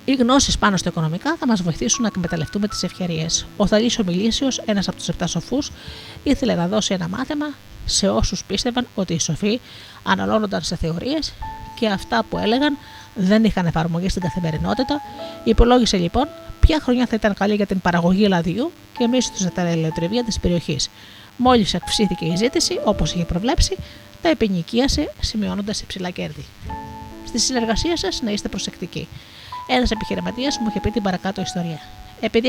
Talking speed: 150 wpm